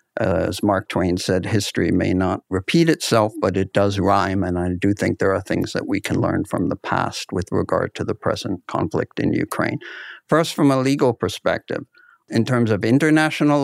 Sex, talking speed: male, 195 wpm